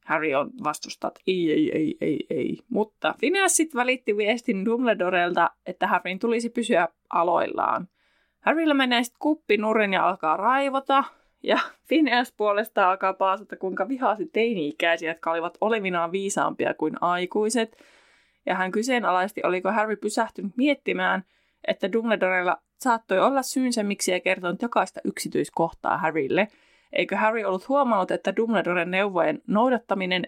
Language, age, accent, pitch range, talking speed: Finnish, 20-39, native, 180-235 Hz, 130 wpm